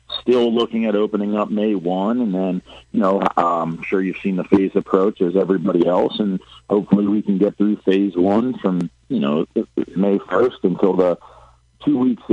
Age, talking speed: 40-59, 185 wpm